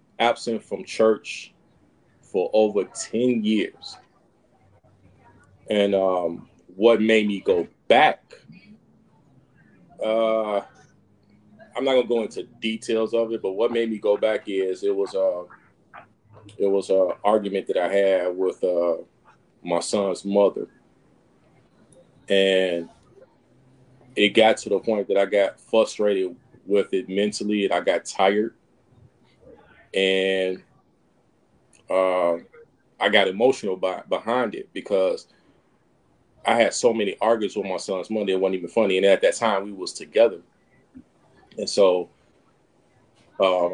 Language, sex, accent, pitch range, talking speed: English, male, American, 95-115 Hz, 125 wpm